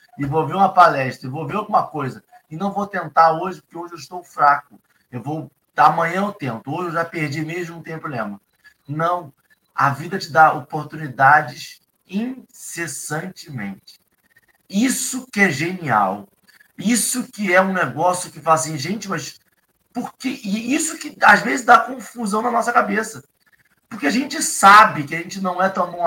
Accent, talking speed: Brazilian, 175 wpm